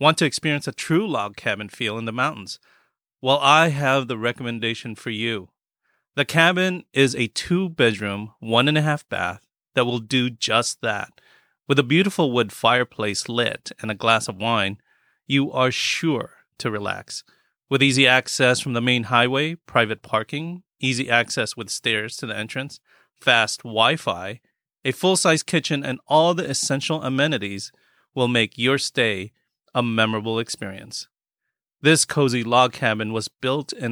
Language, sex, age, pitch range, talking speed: English, male, 30-49, 115-140 Hz, 150 wpm